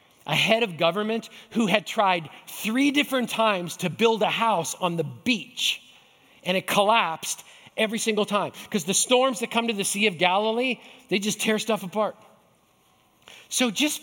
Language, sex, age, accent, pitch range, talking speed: English, male, 40-59, American, 160-230 Hz, 170 wpm